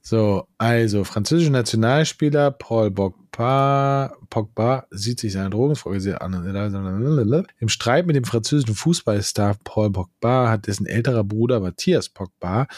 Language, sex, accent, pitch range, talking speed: German, male, German, 105-125 Hz, 125 wpm